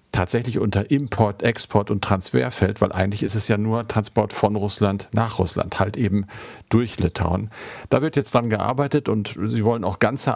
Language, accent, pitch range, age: German, German, 95-110 Hz, 50-69